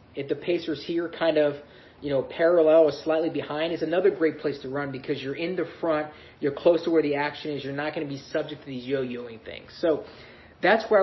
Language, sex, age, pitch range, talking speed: English, male, 30-49, 145-175 Hz, 235 wpm